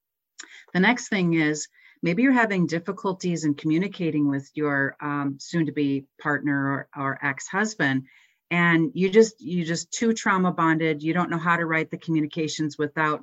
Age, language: 40-59, English